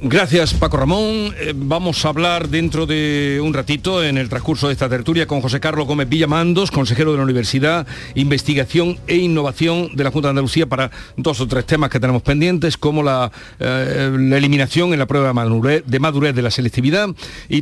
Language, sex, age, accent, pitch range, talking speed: Spanish, male, 60-79, Spanish, 115-160 Hz, 190 wpm